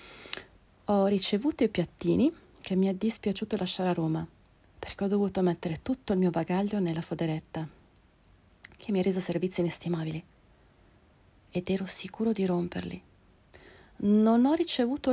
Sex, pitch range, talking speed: female, 165-210 Hz, 140 wpm